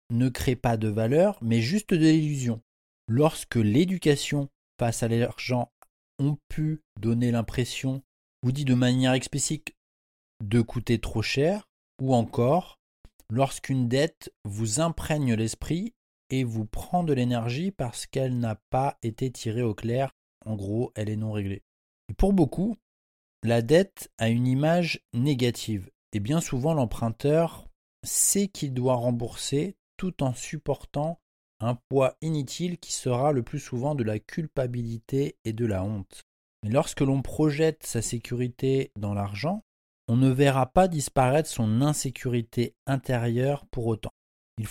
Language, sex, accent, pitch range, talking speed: French, male, French, 115-150 Hz, 140 wpm